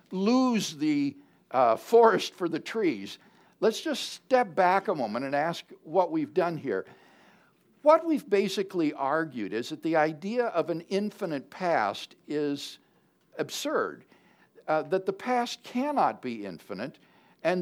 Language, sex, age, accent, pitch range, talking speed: English, male, 60-79, American, 150-215 Hz, 140 wpm